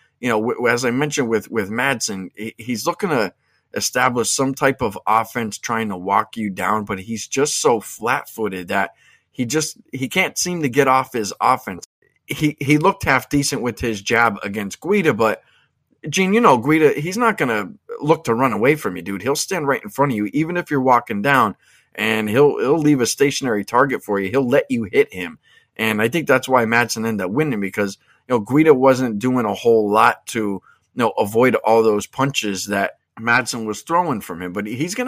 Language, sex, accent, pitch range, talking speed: English, male, American, 105-140 Hz, 210 wpm